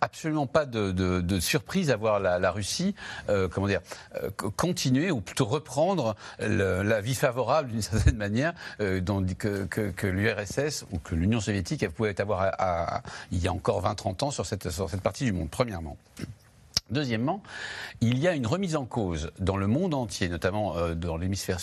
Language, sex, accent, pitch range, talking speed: French, male, French, 95-140 Hz, 200 wpm